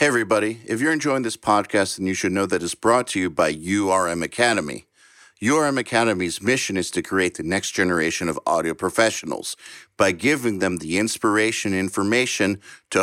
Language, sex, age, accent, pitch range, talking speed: English, male, 50-69, American, 95-115 Hz, 180 wpm